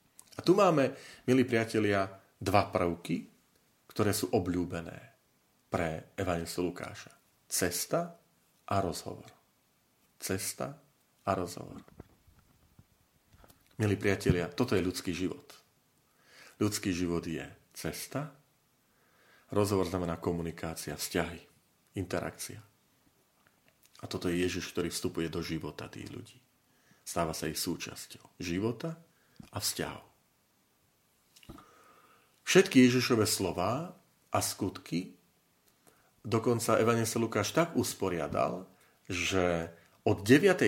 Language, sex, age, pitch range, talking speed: Slovak, male, 40-59, 90-120 Hz, 95 wpm